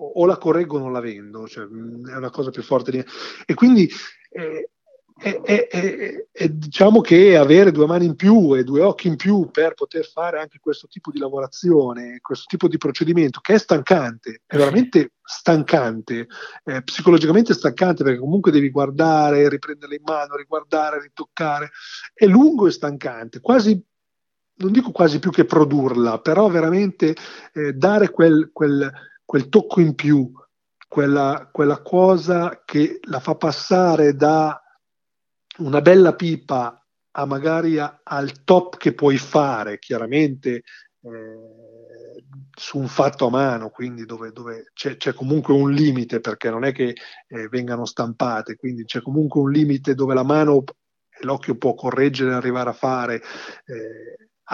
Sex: male